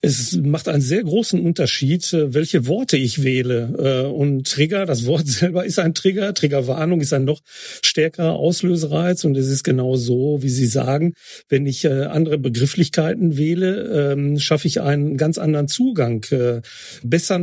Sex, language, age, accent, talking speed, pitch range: male, German, 40-59, German, 150 wpm, 140-180 Hz